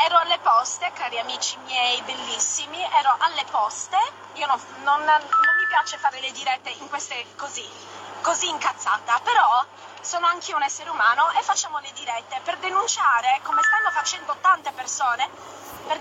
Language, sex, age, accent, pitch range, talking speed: Italian, female, 20-39, native, 290-400 Hz, 155 wpm